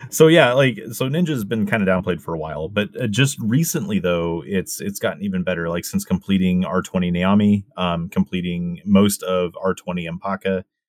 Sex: male